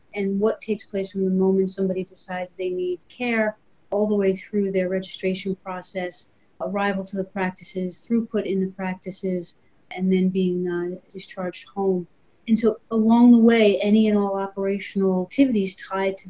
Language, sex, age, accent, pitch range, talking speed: English, female, 30-49, American, 185-200 Hz, 165 wpm